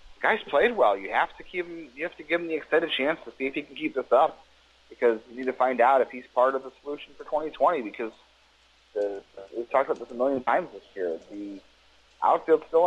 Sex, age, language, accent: male, 30-49, English, American